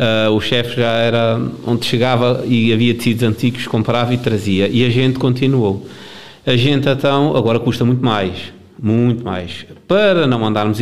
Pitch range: 110-130 Hz